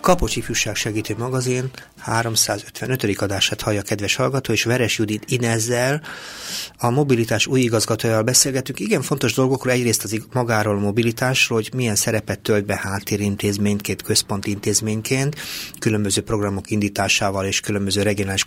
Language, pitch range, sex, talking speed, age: Hungarian, 105-130 Hz, male, 135 wpm, 30-49